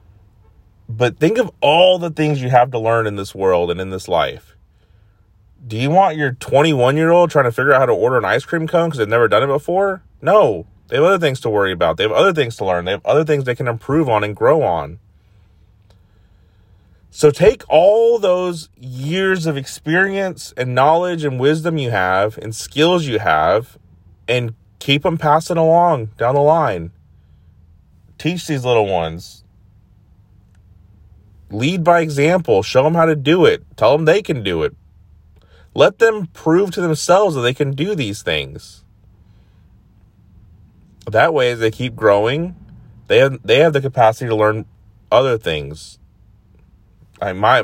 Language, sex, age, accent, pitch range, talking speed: English, male, 30-49, American, 95-155 Hz, 175 wpm